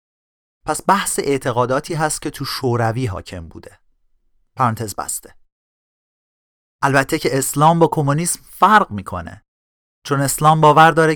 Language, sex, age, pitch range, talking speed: Persian, male, 30-49, 115-160 Hz, 120 wpm